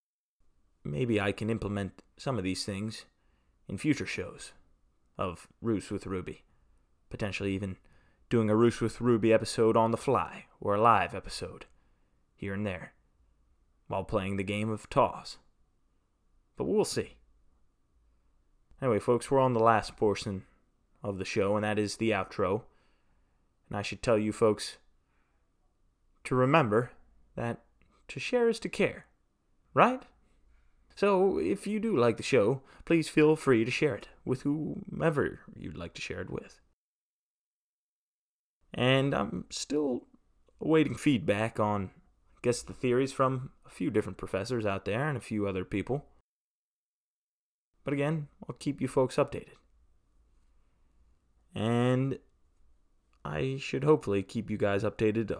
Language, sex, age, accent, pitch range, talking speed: English, male, 20-39, American, 95-130 Hz, 140 wpm